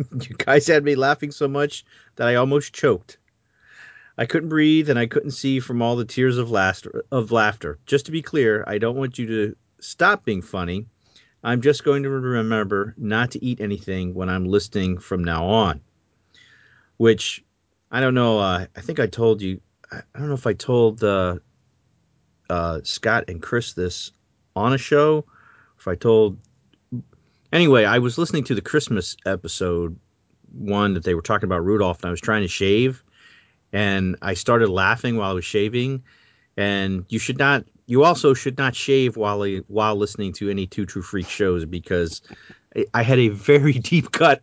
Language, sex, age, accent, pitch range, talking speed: English, male, 40-59, American, 100-130 Hz, 185 wpm